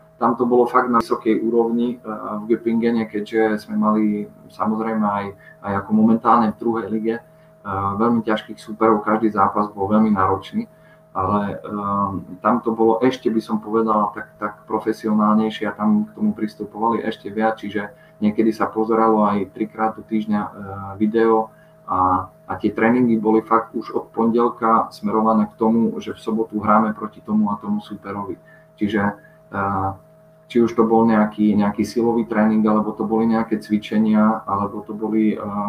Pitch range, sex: 105-115 Hz, male